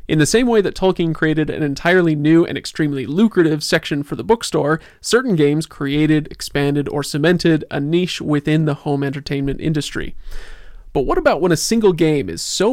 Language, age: English, 30-49